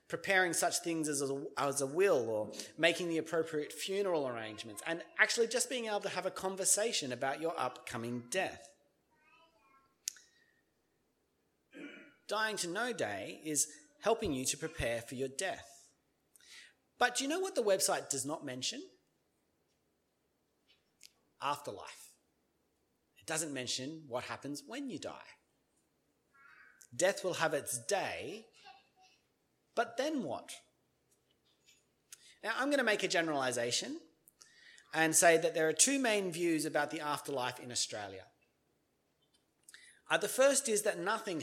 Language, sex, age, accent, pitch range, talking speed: English, male, 30-49, Australian, 140-215 Hz, 130 wpm